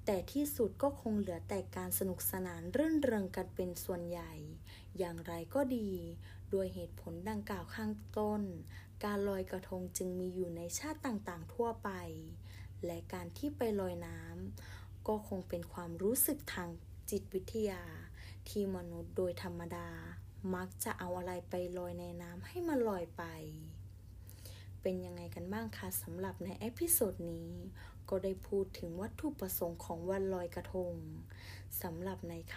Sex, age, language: female, 20-39, Thai